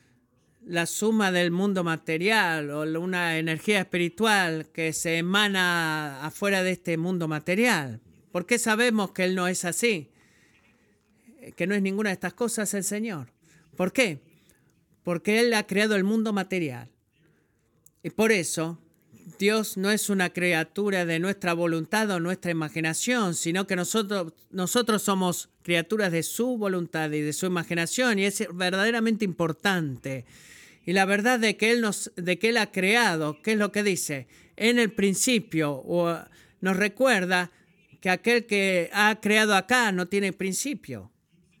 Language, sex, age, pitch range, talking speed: Spanish, male, 40-59, 165-215 Hz, 155 wpm